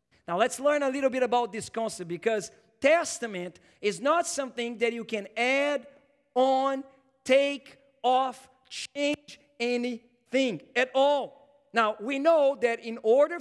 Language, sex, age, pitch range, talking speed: English, male, 50-69, 165-250 Hz, 140 wpm